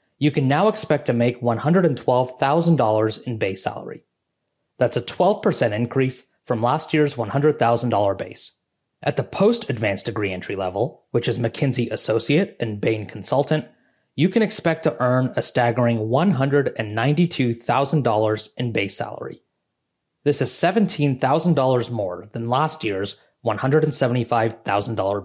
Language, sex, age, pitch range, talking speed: English, male, 30-49, 115-155 Hz, 120 wpm